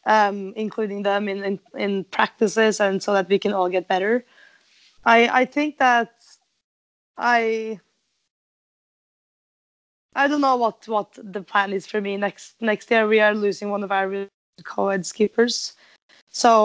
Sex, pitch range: female, 195-230 Hz